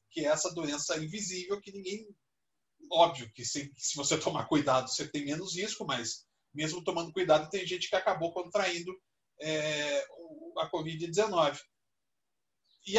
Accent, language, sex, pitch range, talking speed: Brazilian, Portuguese, male, 145-215 Hz, 145 wpm